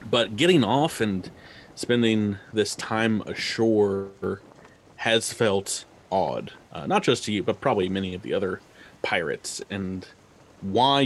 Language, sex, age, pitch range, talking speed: English, male, 30-49, 95-115 Hz, 135 wpm